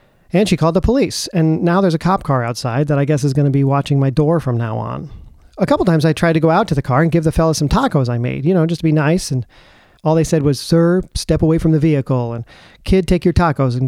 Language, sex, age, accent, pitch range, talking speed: English, male, 40-59, American, 135-175 Hz, 290 wpm